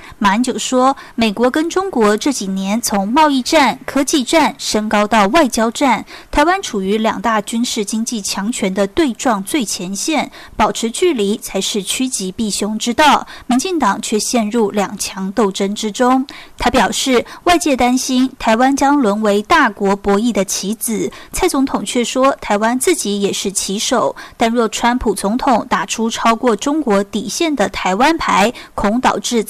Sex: female